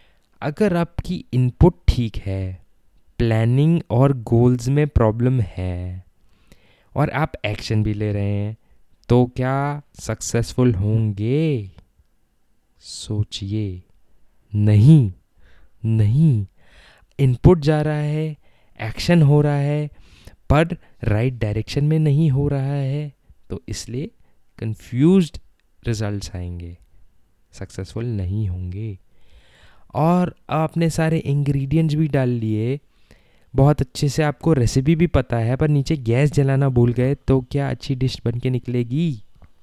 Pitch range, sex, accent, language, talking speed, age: 100-145 Hz, male, Indian, English, 115 wpm, 20-39